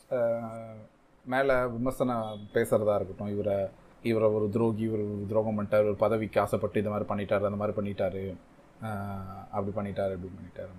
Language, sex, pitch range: Tamil, male, 105-140 Hz